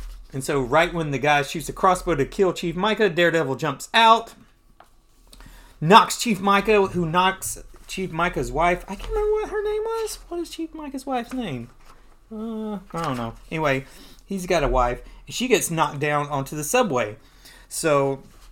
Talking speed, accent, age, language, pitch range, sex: 180 wpm, American, 30-49, English, 125-190 Hz, male